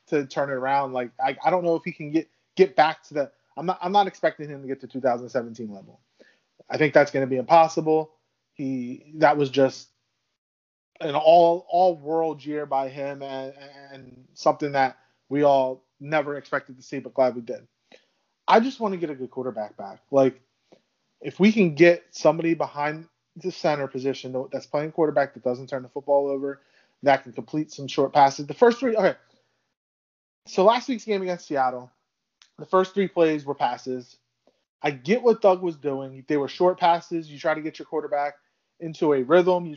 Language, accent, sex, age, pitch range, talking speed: English, American, male, 20-39, 130-165 Hz, 195 wpm